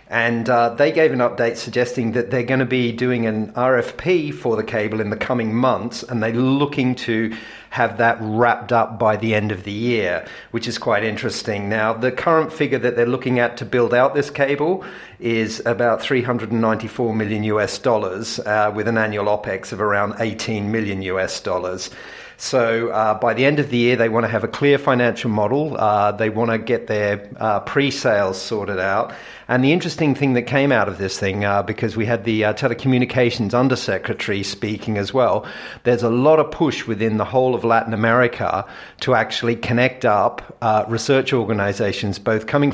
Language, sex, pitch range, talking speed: English, male, 110-125 Hz, 190 wpm